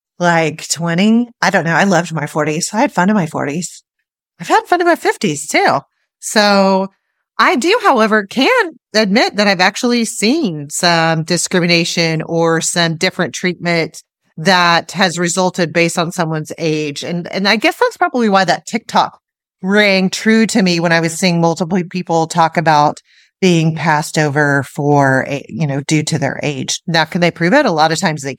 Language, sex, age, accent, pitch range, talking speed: English, female, 30-49, American, 170-215 Hz, 185 wpm